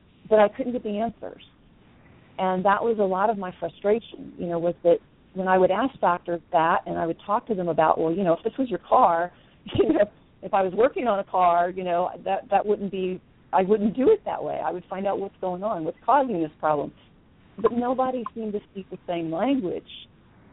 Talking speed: 230 wpm